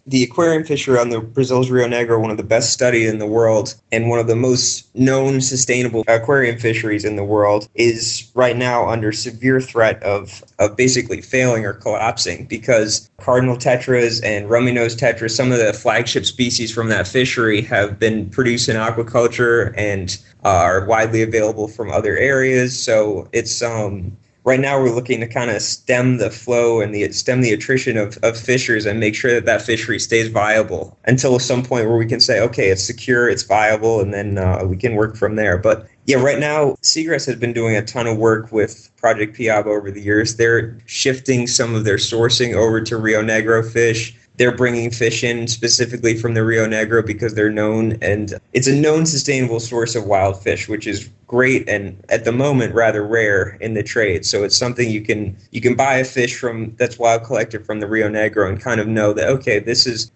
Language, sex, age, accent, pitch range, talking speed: English, male, 20-39, American, 110-125 Hz, 205 wpm